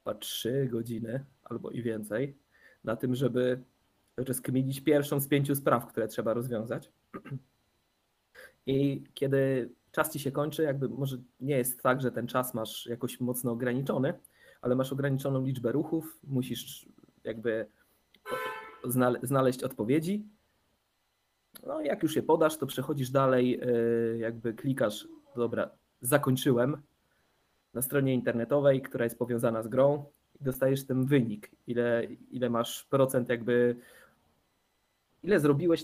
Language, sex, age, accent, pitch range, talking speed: Polish, male, 20-39, native, 120-145 Hz, 125 wpm